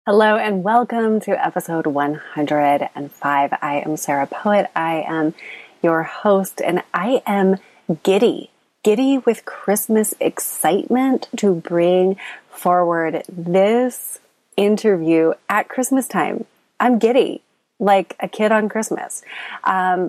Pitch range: 165-215 Hz